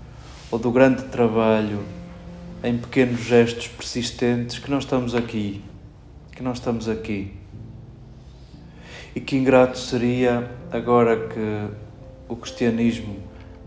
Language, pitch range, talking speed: Portuguese, 105-125 Hz, 105 wpm